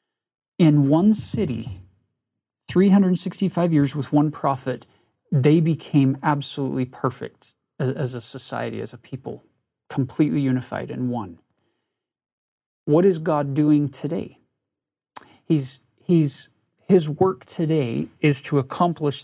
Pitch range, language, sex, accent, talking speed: 125-160 Hz, English, male, American, 110 wpm